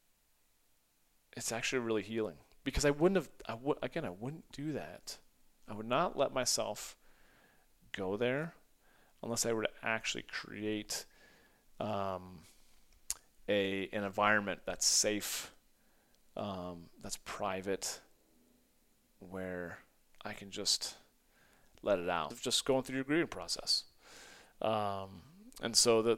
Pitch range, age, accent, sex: 95-115 Hz, 30-49, American, male